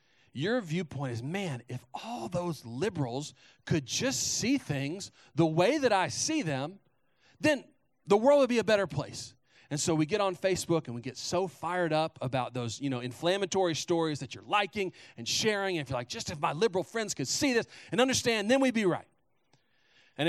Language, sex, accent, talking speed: English, male, American, 190 wpm